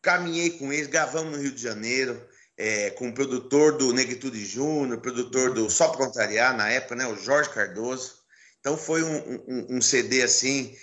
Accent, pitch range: Brazilian, 130-180 Hz